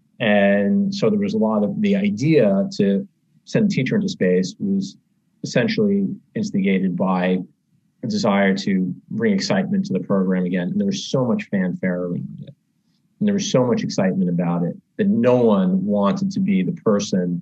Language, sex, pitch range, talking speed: English, male, 125-210 Hz, 180 wpm